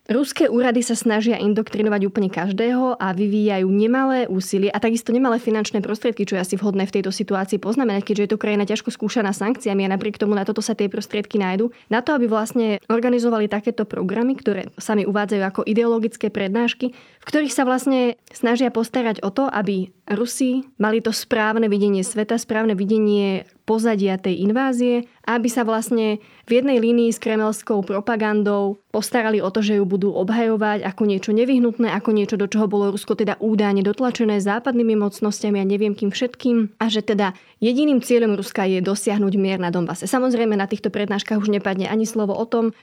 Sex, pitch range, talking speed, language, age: female, 200-235 Hz, 180 wpm, Slovak, 20-39